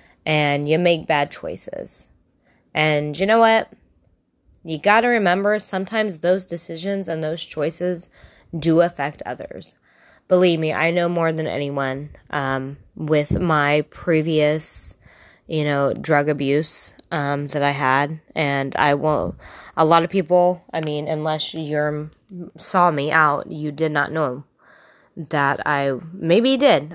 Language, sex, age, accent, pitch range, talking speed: English, female, 20-39, American, 145-175 Hz, 140 wpm